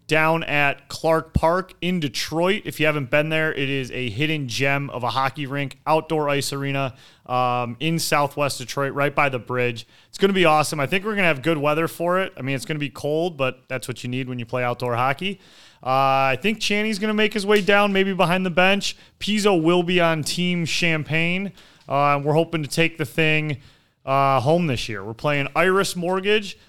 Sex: male